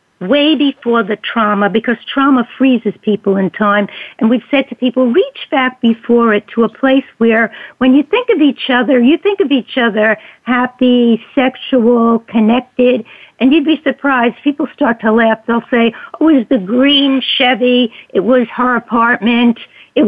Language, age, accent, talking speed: English, 60-79, American, 175 wpm